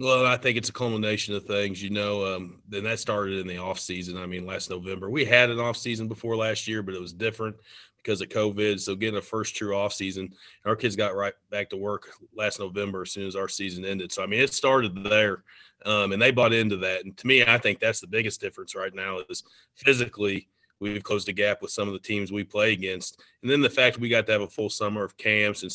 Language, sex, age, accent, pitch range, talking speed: English, male, 30-49, American, 95-110 Hz, 260 wpm